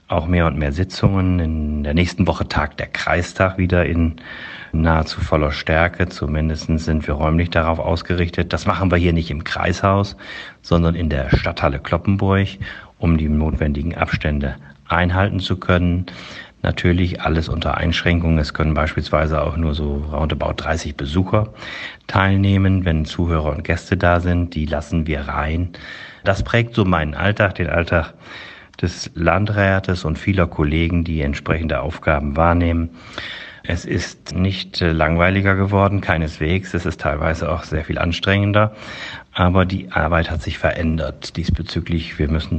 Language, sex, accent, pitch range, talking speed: German, male, German, 75-90 Hz, 145 wpm